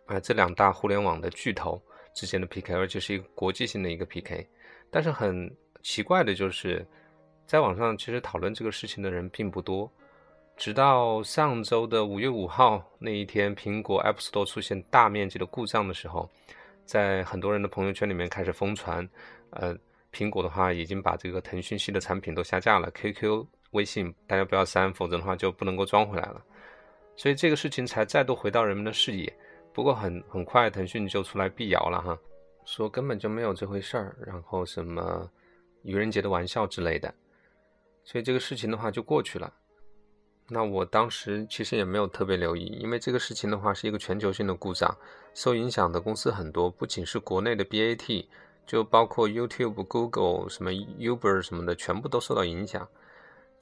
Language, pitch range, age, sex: Chinese, 95-110 Hz, 20-39, male